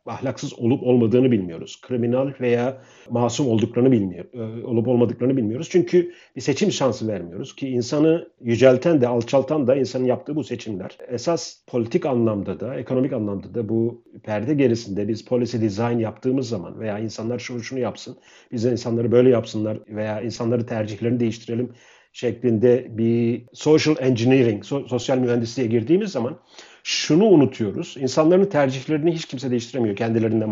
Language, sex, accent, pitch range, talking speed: Turkish, male, native, 115-135 Hz, 145 wpm